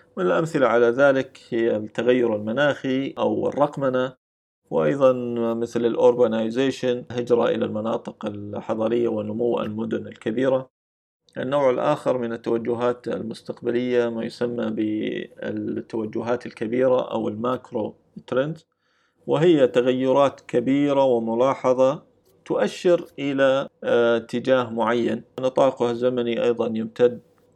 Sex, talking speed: male, 90 wpm